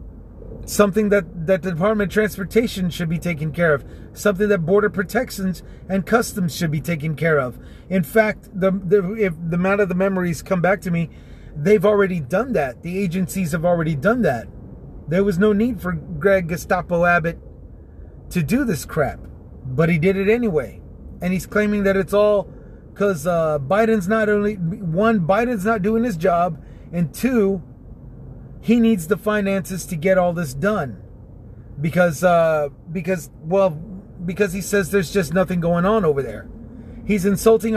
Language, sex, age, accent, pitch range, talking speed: English, male, 30-49, American, 160-205 Hz, 170 wpm